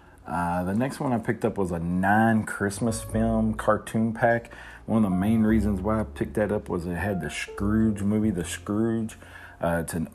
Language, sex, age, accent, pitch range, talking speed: English, male, 40-59, American, 85-110 Hz, 205 wpm